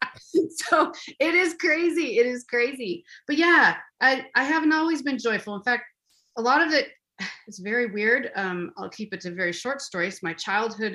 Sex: female